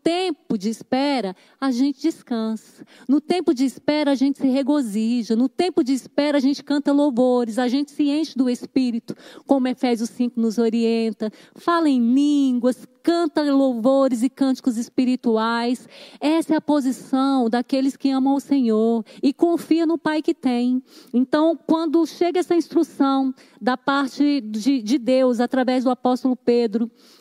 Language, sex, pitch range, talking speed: Portuguese, female, 245-295 Hz, 155 wpm